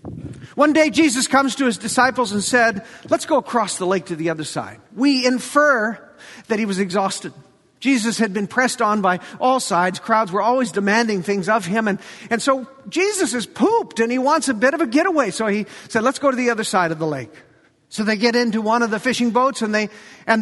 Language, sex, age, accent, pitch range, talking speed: English, male, 50-69, American, 200-260 Hz, 225 wpm